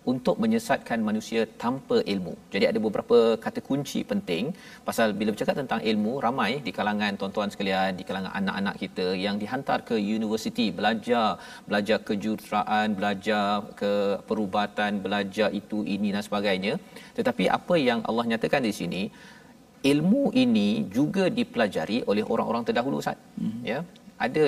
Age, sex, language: 40-59, male, Malayalam